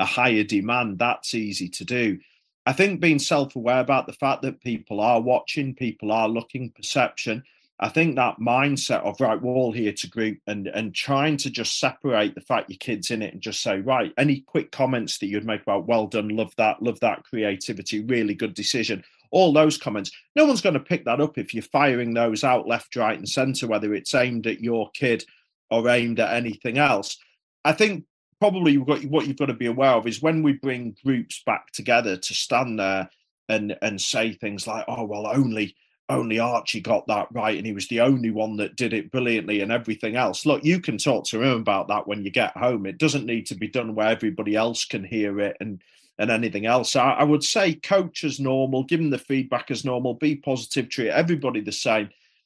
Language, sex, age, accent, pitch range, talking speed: English, male, 40-59, British, 110-140 Hz, 215 wpm